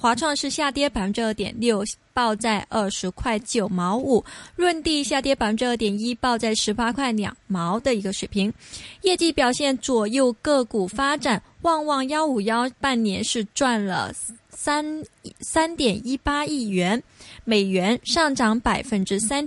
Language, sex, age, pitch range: Chinese, female, 20-39, 215-280 Hz